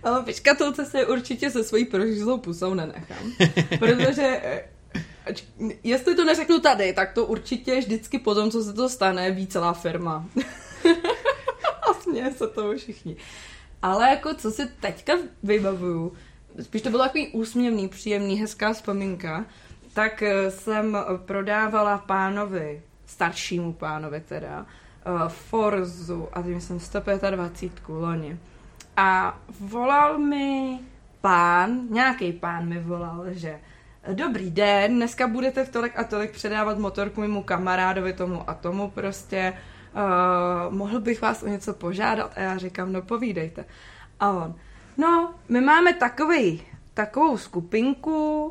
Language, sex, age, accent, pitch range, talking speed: Czech, female, 20-39, native, 180-250 Hz, 125 wpm